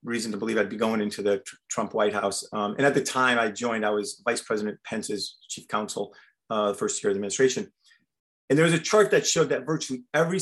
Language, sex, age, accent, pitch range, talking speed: English, male, 30-49, American, 110-150 Hz, 235 wpm